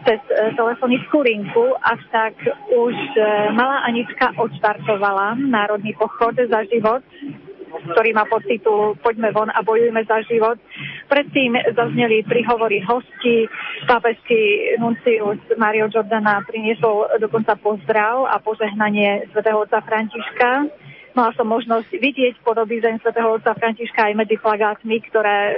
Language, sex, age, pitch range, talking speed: Slovak, female, 30-49, 210-245 Hz, 120 wpm